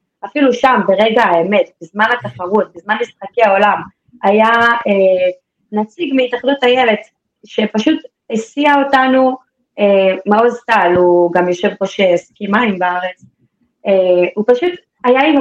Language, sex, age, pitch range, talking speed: Hebrew, female, 20-39, 200-245 Hz, 125 wpm